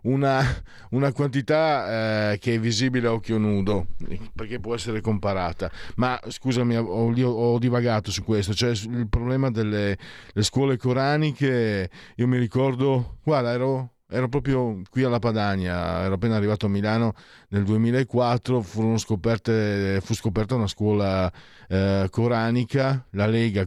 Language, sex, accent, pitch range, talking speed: Italian, male, native, 95-115 Hz, 135 wpm